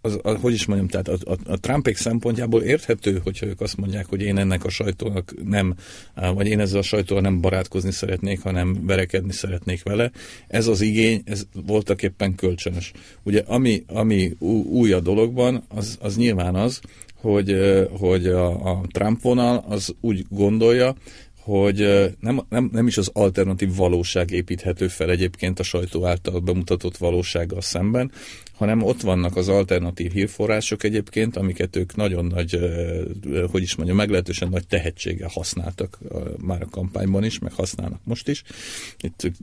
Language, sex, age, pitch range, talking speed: Hungarian, male, 40-59, 90-110 Hz, 160 wpm